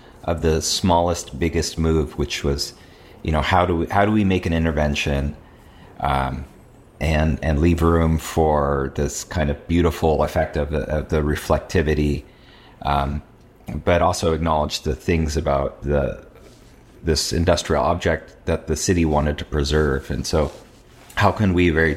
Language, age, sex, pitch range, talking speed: French, 30-49, male, 75-85 Hz, 155 wpm